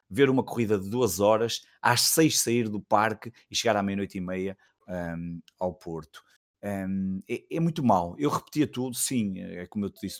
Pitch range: 95-125 Hz